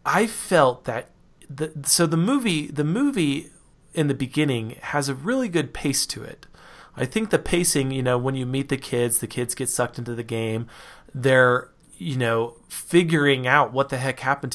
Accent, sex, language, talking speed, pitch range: American, male, English, 190 wpm, 120-150 Hz